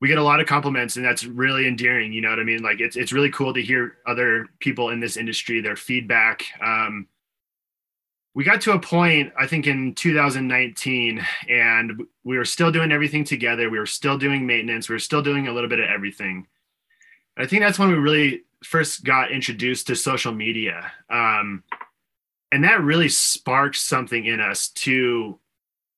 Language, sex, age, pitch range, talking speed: English, male, 20-39, 120-150 Hz, 185 wpm